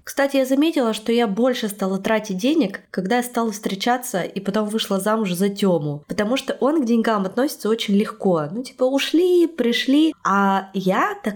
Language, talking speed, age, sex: Russian, 180 wpm, 20-39, female